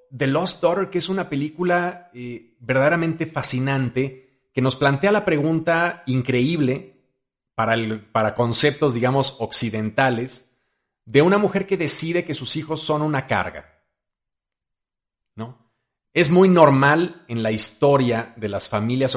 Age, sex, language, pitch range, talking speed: 40-59, male, Spanish, 110-140 Hz, 130 wpm